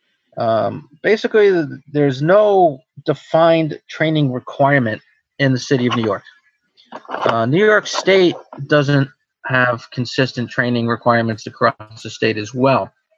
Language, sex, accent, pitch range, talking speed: English, male, American, 120-160 Hz, 125 wpm